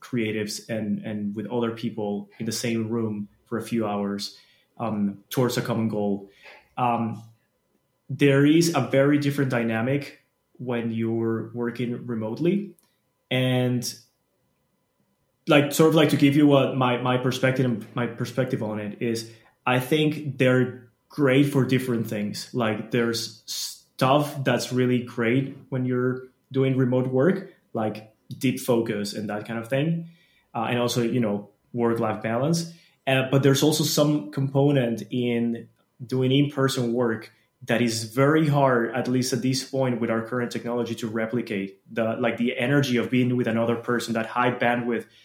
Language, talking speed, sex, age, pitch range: English, 160 wpm, male, 20-39, 115-135 Hz